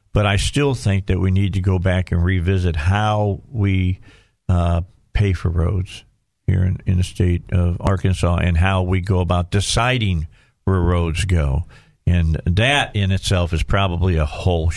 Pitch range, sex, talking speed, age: 95-125 Hz, male, 170 wpm, 50-69